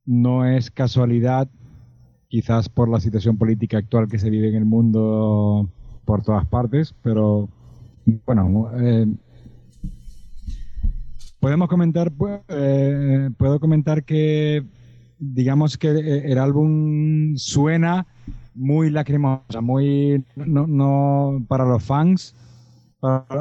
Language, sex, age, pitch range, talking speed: Spanish, male, 30-49, 120-140 Hz, 105 wpm